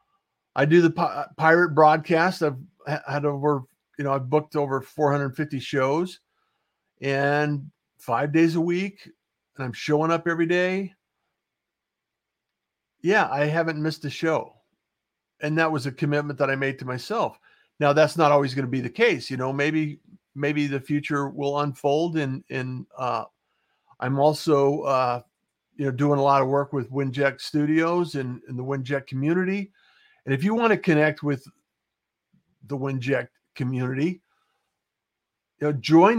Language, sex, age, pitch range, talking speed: English, male, 50-69, 135-160 Hz, 150 wpm